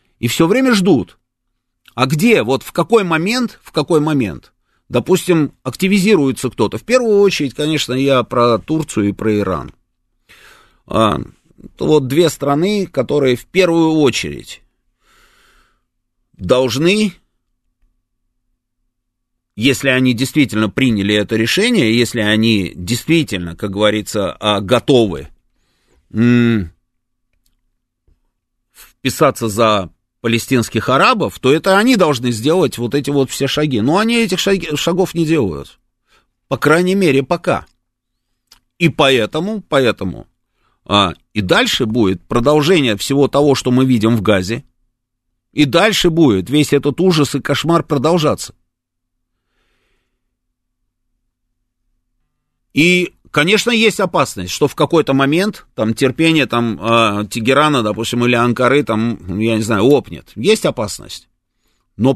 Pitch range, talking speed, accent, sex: 115-155 Hz, 110 wpm, native, male